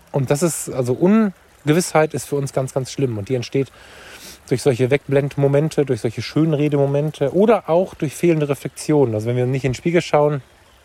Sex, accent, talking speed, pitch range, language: male, German, 185 wpm, 120-145 Hz, German